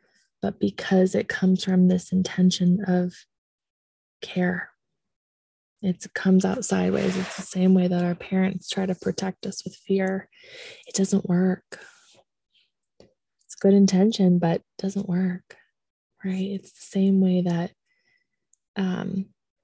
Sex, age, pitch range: female, 20-39, 180-200 Hz